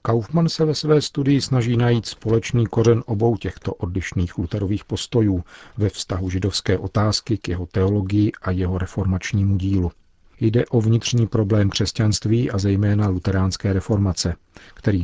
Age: 40-59